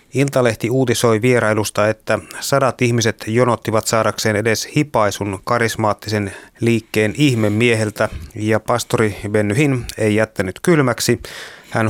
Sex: male